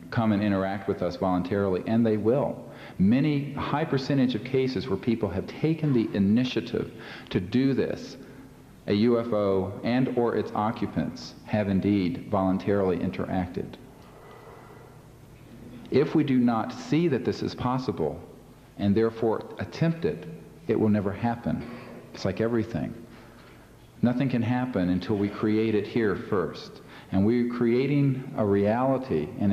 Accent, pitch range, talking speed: American, 95-120 Hz, 140 wpm